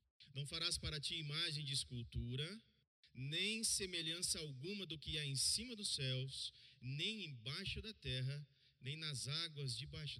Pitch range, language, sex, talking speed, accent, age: 120-155 Hz, Portuguese, male, 145 wpm, Brazilian, 40-59